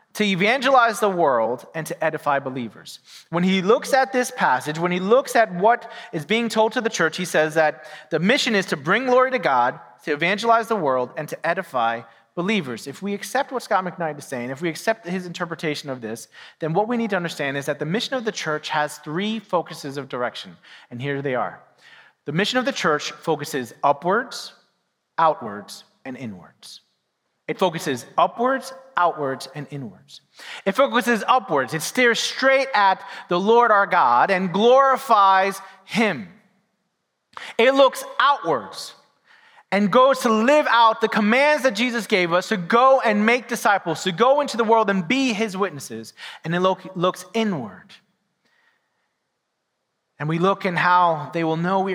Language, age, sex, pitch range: English, 30-49, male, 155-230 Hz